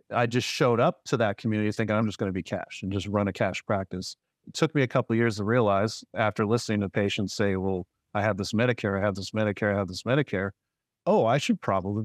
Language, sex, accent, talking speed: English, male, American, 255 wpm